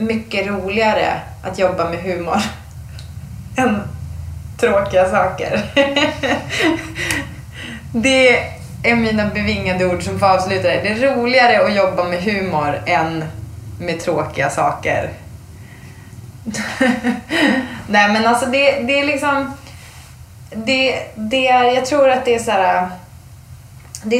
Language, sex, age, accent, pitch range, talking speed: English, female, 20-39, Swedish, 160-235 Hz, 115 wpm